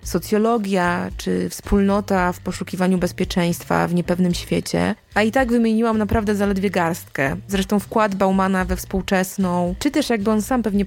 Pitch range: 185-220 Hz